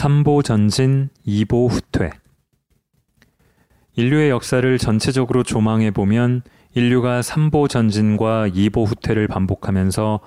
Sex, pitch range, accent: male, 100-125 Hz, native